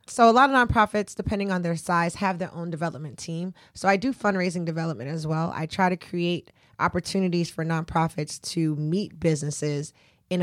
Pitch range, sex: 160-195 Hz, female